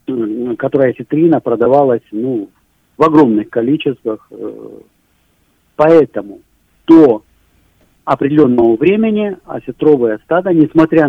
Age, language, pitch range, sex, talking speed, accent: 50-69, Russian, 115-180 Hz, male, 75 wpm, native